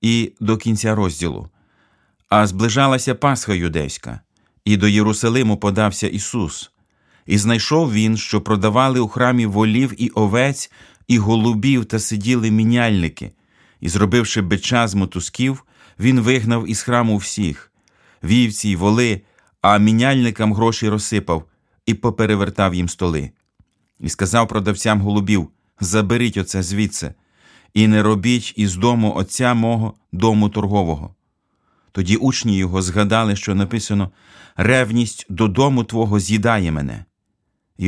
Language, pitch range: Ukrainian, 100-115 Hz